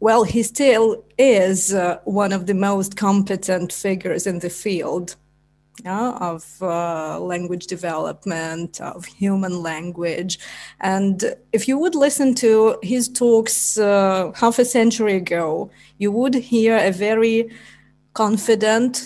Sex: female